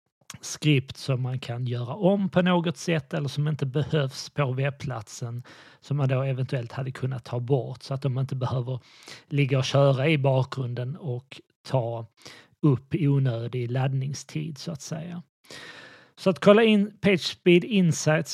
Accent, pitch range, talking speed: native, 130-155 Hz, 155 wpm